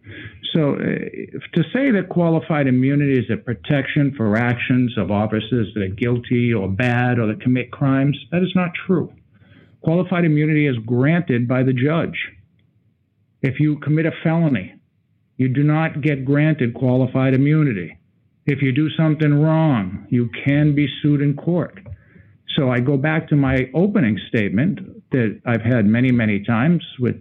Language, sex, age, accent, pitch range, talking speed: English, male, 50-69, American, 120-155 Hz, 155 wpm